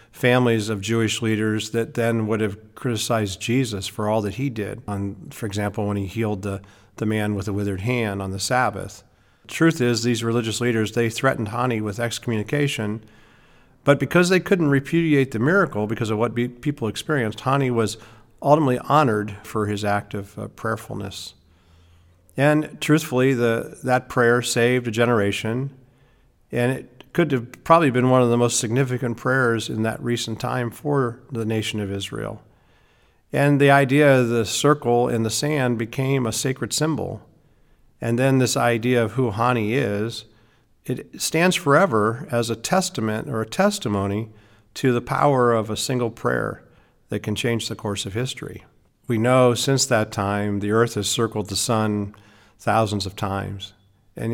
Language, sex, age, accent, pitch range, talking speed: English, male, 50-69, American, 105-130 Hz, 170 wpm